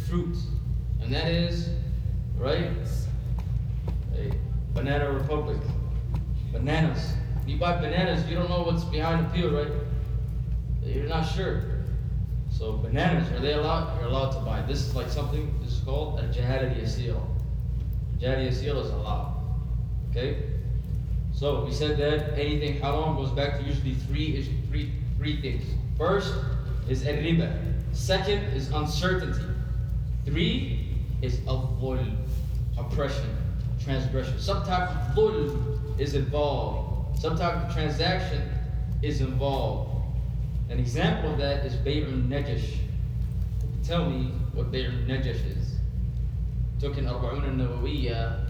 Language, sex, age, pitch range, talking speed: English, male, 20-39, 120-145 Hz, 125 wpm